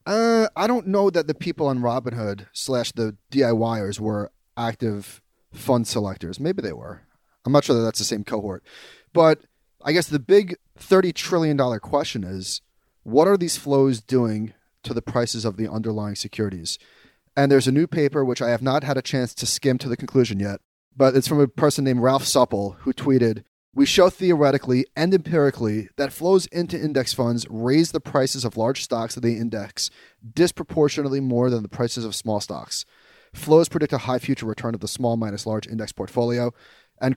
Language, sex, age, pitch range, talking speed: English, male, 30-49, 110-150 Hz, 190 wpm